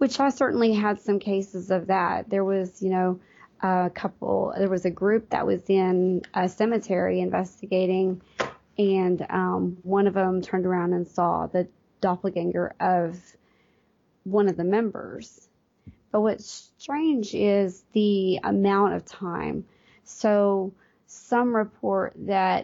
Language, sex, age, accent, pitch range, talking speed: English, female, 30-49, American, 185-220 Hz, 140 wpm